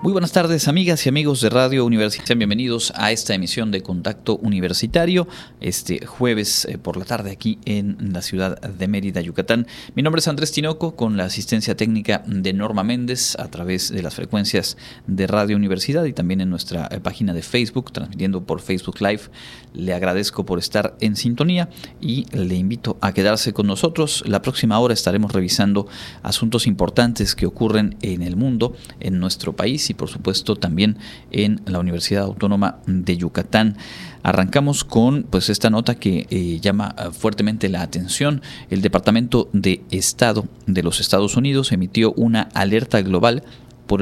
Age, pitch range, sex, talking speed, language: 40-59, 95-120 Hz, male, 165 wpm, Spanish